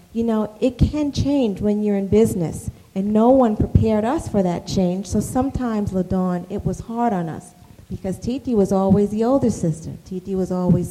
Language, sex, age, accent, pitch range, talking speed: English, female, 40-59, American, 170-220 Hz, 195 wpm